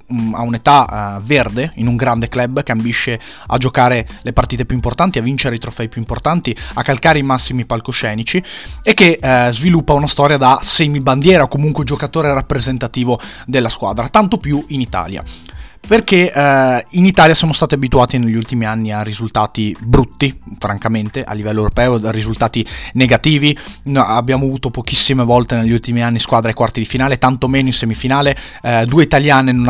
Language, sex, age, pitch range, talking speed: Italian, male, 20-39, 115-140 Hz, 170 wpm